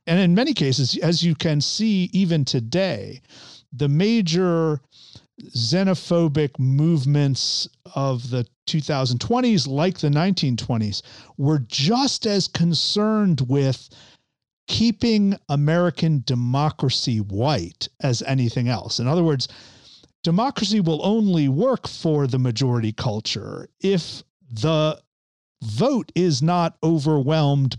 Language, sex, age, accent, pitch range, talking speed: English, male, 50-69, American, 125-165 Hz, 105 wpm